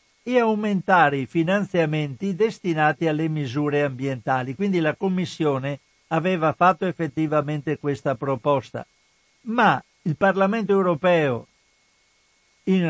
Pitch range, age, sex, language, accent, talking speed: 145-180 Hz, 60-79, male, Italian, native, 100 wpm